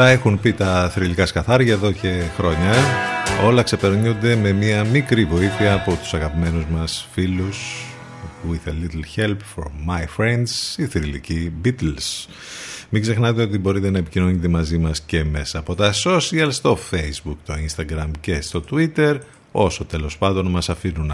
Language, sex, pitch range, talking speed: Greek, male, 80-100 Hz, 155 wpm